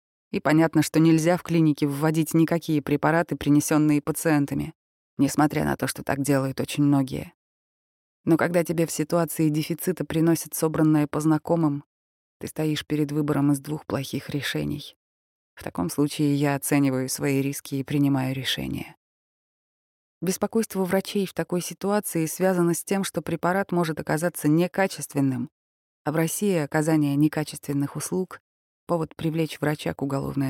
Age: 20-39